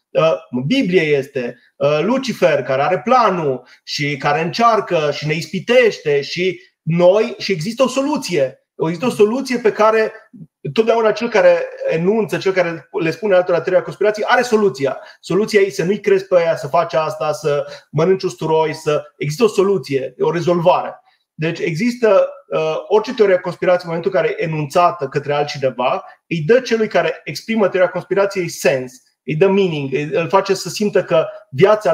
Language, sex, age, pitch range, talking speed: Romanian, male, 30-49, 165-220 Hz, 160 wpm